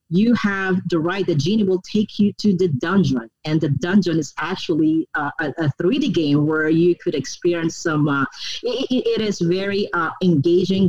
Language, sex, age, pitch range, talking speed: English, female, 40-59, 150-190 Hz, 185 wpm